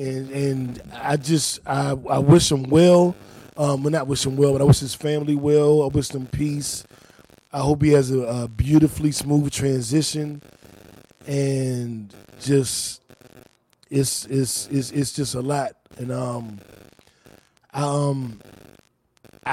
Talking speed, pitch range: 145 wpm, 130-165 Hz